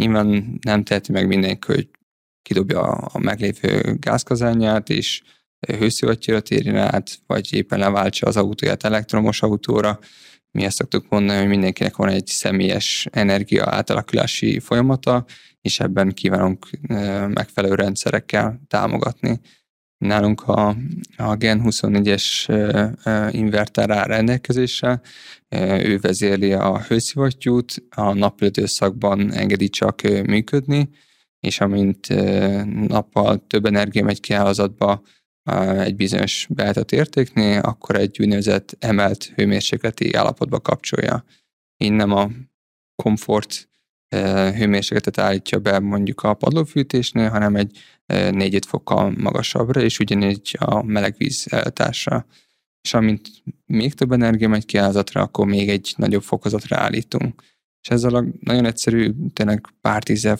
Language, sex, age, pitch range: Hungarian, male, 20-39, 100-115 Hz